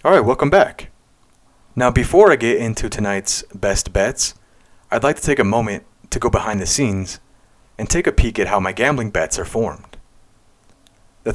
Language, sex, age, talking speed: English, male, 30-49, 180 wpm